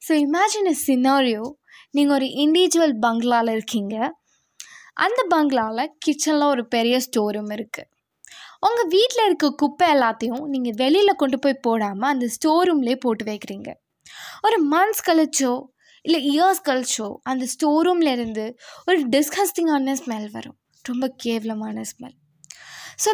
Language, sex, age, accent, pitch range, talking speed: Tamil, female, 20-39, native, 235-310 Hz, 120 wpm